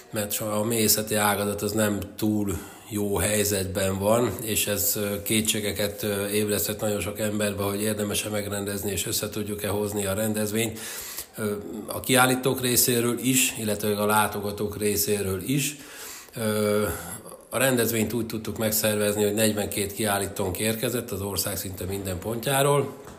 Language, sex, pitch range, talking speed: Hungarian, male, 100-110 Hz, 125 wpm